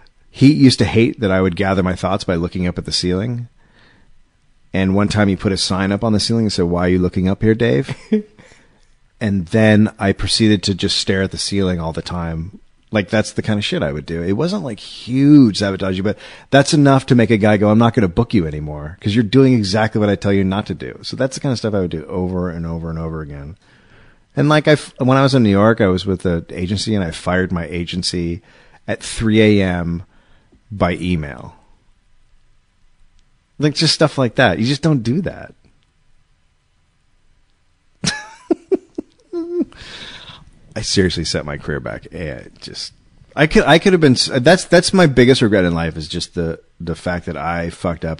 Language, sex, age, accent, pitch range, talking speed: English, male, 30-49, American, 85-115 Hz, 210 wpm